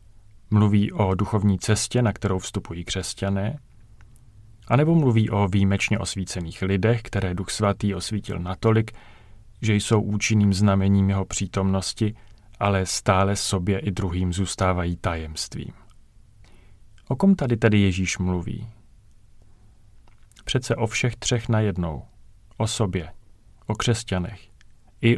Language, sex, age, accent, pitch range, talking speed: Czech, male, 30-49, native, 100-115 Hz, 115 wpm